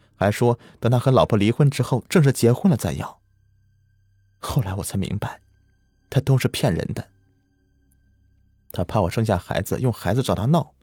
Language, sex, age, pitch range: Chinese, male, 30-49, 95-120 Hz